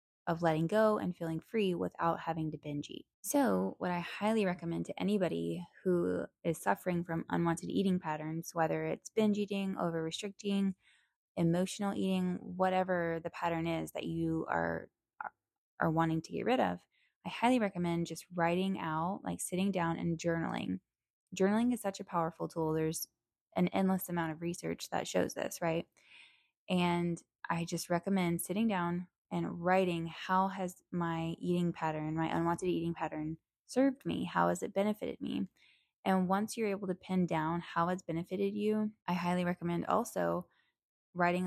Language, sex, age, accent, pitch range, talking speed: English, female, 20-39, American, 160-190 Hz, 165 wpm